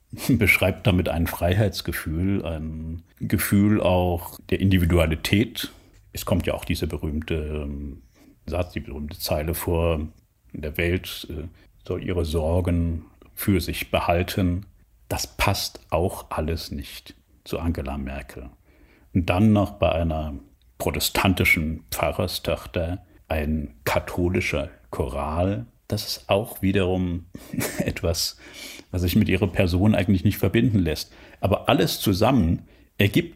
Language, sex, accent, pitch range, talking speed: German, male, German, 75-95 Hz, 115 wpm